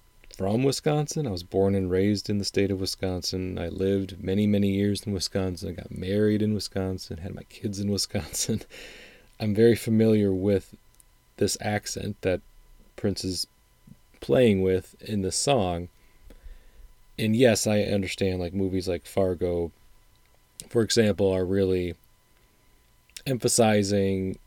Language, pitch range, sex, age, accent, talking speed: English, 95-110 Hz, male, 30-49, American, 135 wpm